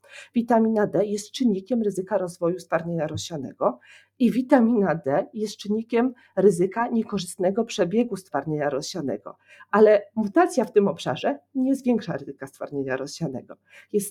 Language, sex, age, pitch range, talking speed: Polish, female, 40-59, 175-220 Hz, 125 wpm